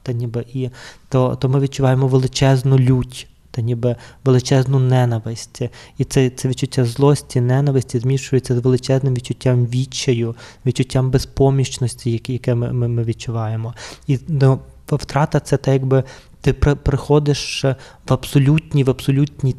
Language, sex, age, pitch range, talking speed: Ukrainian, male, 20-39, 120-135 Hz, 125 wpm